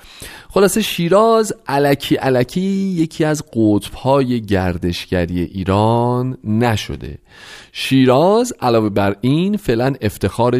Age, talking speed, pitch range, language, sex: 40-59, 95 wpm, 95-145 Hz, Persian, male